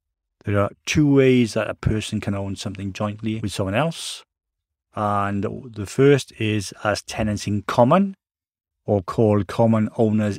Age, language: 40-59, English